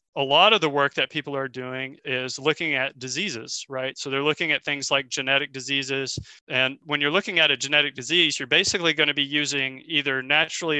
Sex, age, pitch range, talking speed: male, 40-59, 140-165 Hz, 210 wpm